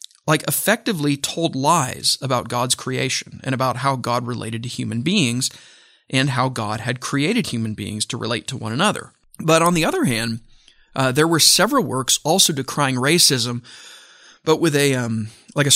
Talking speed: 170 wpm